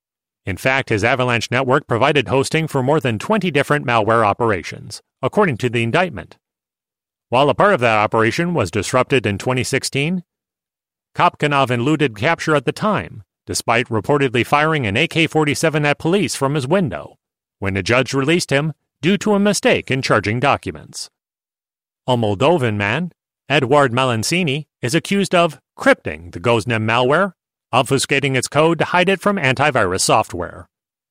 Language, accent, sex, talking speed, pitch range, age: English, American, male, 150 wpm, 120-160 Hz, 40-59